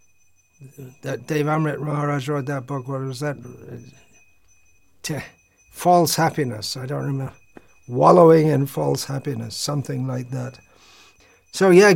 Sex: male